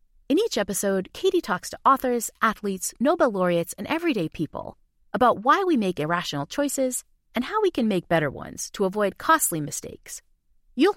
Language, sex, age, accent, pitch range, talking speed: English, female, 30-49, American, 195-320 Hz, 170 wpm